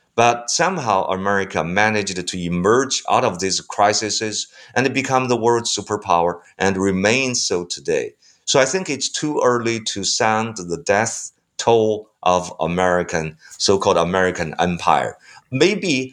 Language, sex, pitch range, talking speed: English, male, 95-125 Hz, 135 wpm